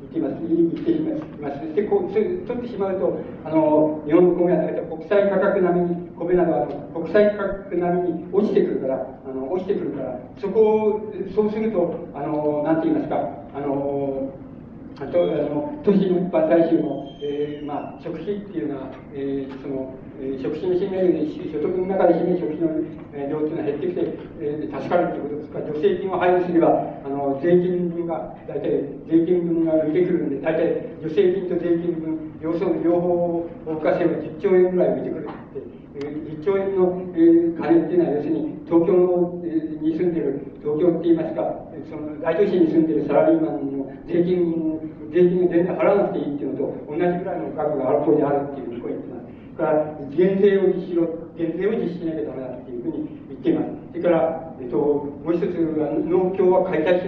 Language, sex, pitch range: Japanese, male, 150-185 Hz